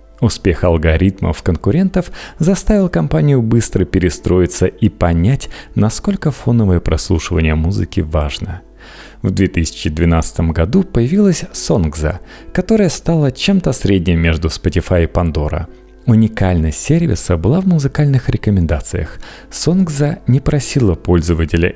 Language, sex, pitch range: Russian, male, 85-130 Hz